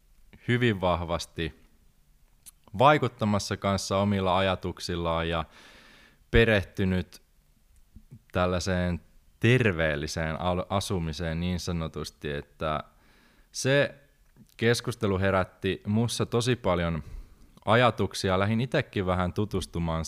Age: 20-39